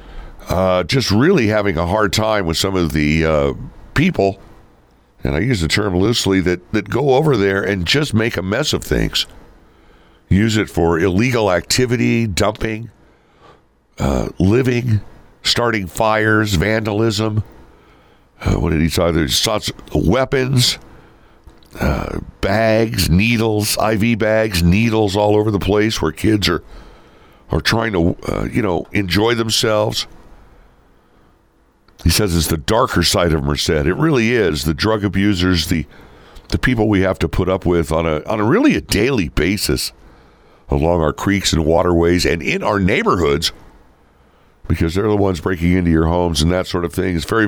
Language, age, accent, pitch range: English, 60-79, American, 85-110 Hz